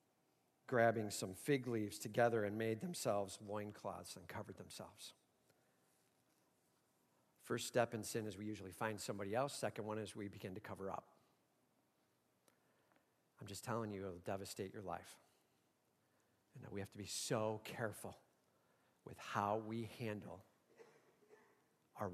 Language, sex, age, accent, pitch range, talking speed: English, male, 50-69, American, 100-130 Hz, 135 wpm